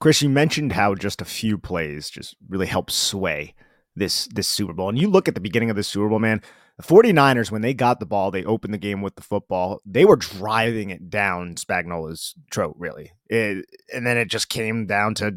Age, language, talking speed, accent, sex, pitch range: 30-49, English, 225 wpm, American, male, 100-125 Hz